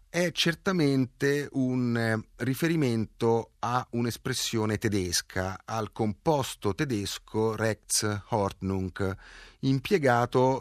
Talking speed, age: 75 wpm, 30-49